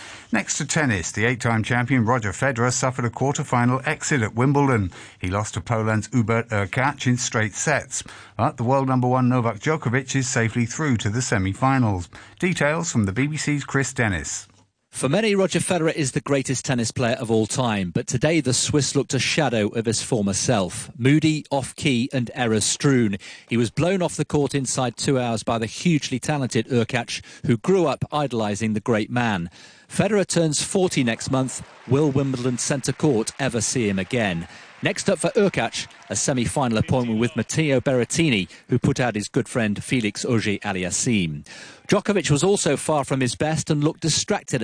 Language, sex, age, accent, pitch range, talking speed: English, male, 50-69, British, 115-145 Hz, 175 wpm